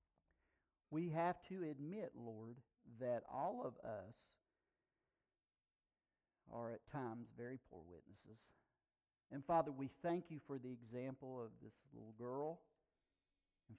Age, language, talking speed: 50-69, English, 120 wpm